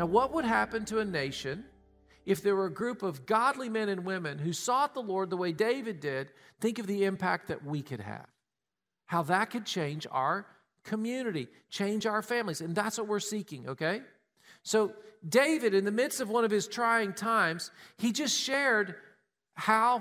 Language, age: English, 40-59